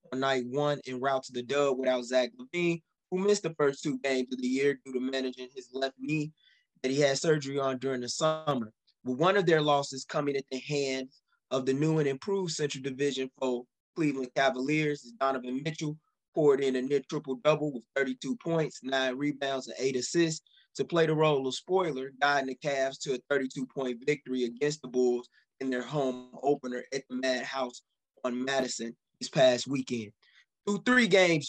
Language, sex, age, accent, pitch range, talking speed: English, male, 20-39, American, 130-155 Hz, 190 wpm